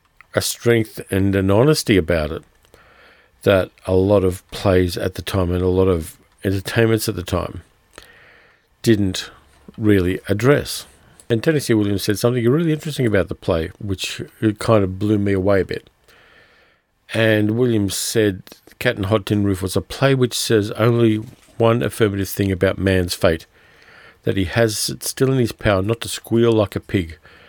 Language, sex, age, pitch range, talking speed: English, male, 50-69, 95-115 Hz, 170 wpm